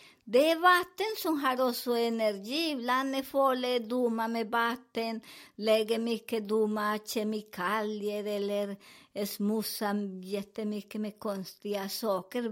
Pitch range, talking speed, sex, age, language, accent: 210-290 Hz, 110 wpm, male, 50-69, Swedish, American